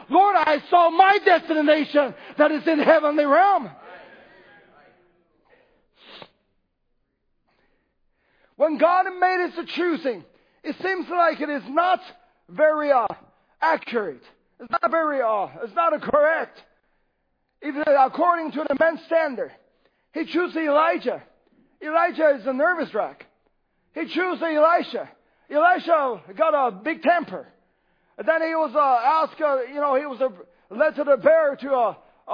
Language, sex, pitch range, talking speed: English, male, 285-345 Hz, 135 wpm